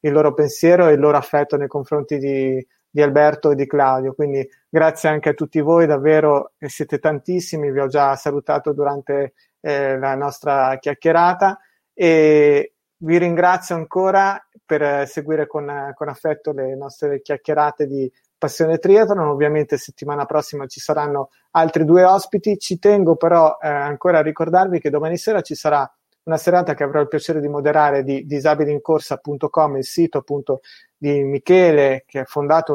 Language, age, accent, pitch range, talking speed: Italian, 30-49, native, 145-165 Hz, 160 wpm